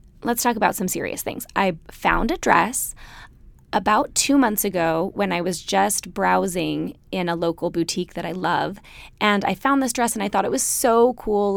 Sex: female